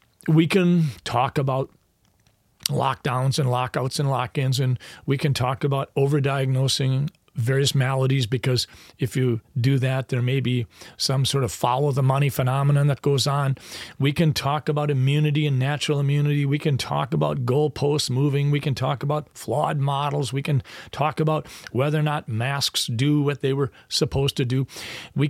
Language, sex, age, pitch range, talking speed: English, male, 40-59, 115-150 Hz, 170 wpm